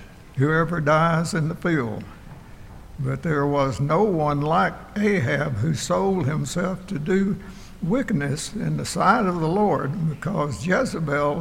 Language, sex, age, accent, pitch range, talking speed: English, male, 60-79, American, 155-185 Hz, 135 wpm